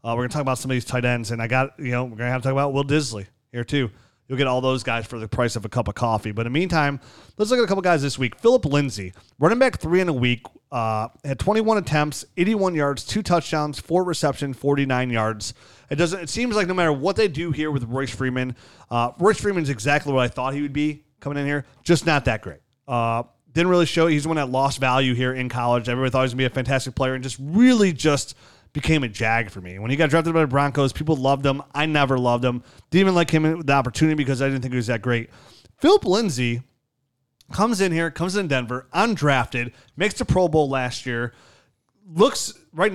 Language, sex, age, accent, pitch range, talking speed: English, male, 30-49, American, 125-165 Hz, 250 wpm